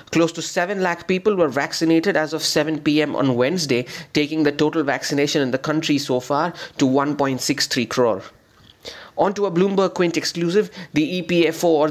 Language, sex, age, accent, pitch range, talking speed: English, male, 30-49, Indian, 140-165 Hz, 165 wpm